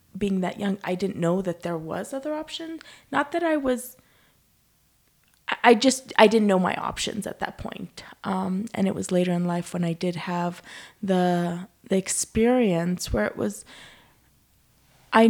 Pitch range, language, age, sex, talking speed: 190-220 Hz, English, 20-39, female, 170 wpm